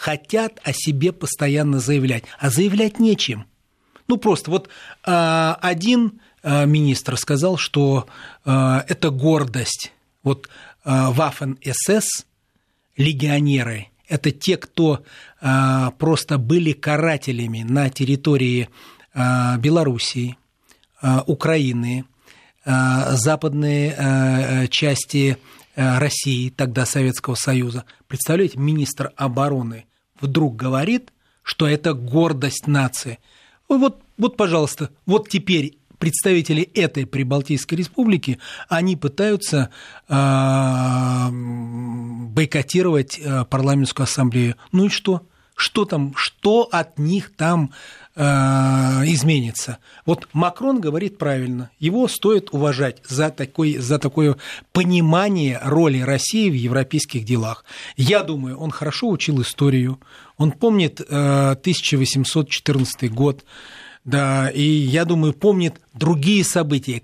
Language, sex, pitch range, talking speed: Russian, male, 130-165 Hz, 90 wpm